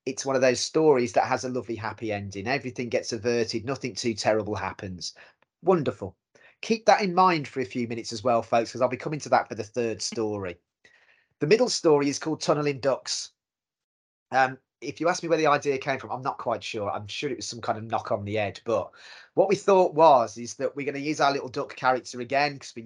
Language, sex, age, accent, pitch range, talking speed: English, male, 30-49, British, 115-150 Hz, 235 wpm